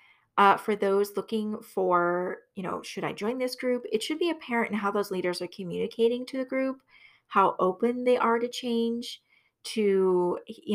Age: 30-49